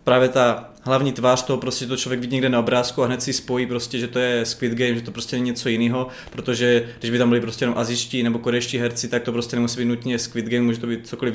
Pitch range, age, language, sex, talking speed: 120-135 Hz, 20-39, Czech, male, 275 wpm